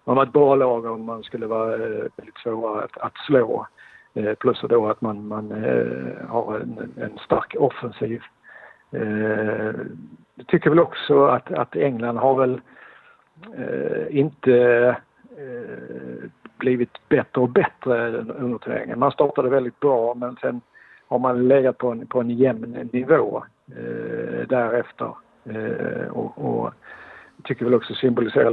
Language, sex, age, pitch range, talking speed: Swedish, male, 50-69, 115-130 Hz, 150 wpm